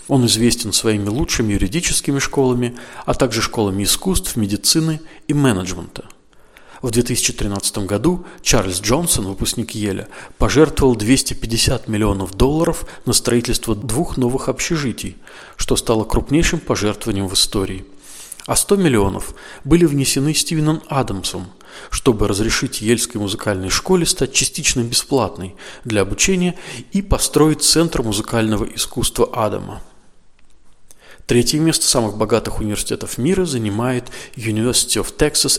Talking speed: 115 wpm